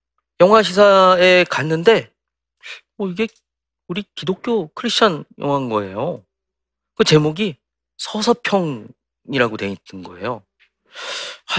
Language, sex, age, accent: Korean, male, 40-59, native